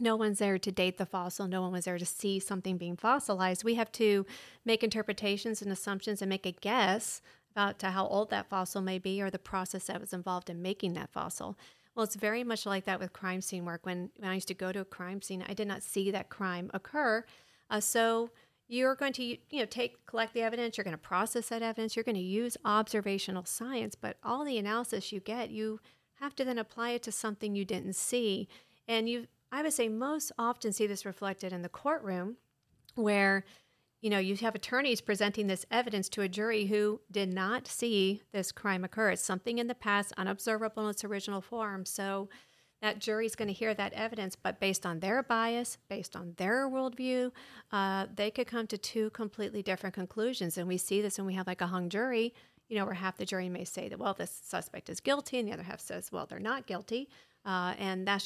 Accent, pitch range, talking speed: American, 190-230 Hz, 225 wpm